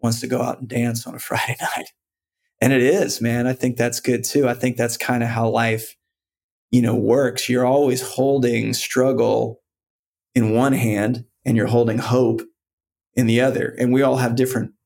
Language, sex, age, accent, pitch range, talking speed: English, male, 30-49, American, 115-130 Hz, 195 wpm